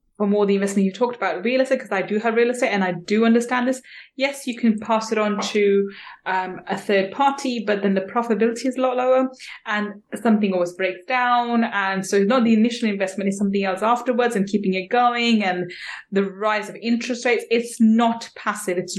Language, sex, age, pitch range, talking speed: English, female, 20-39, 195-230 Hz, 220 wpm